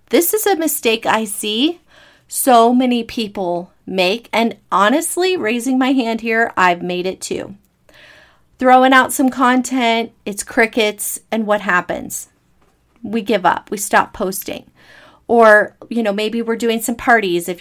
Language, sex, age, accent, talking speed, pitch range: English, female, 30-49, American, 150 wpm, 195-260 Hz